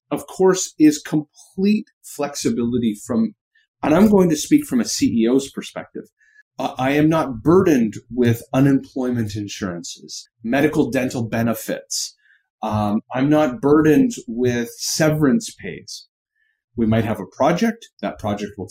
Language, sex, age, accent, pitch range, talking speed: English, male, 30-49, American, 120-200 Hz, 130 wpm